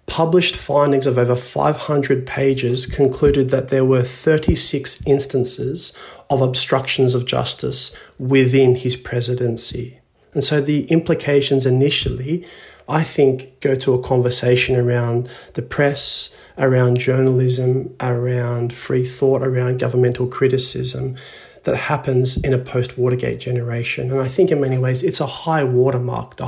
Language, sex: English, male